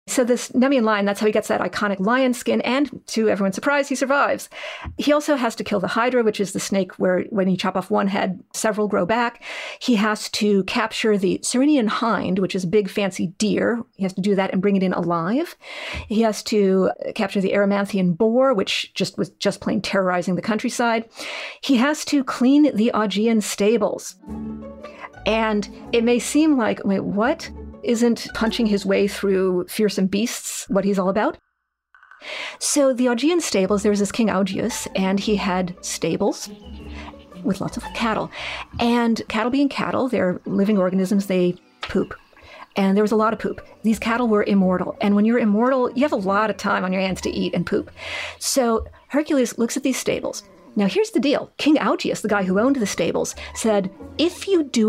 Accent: American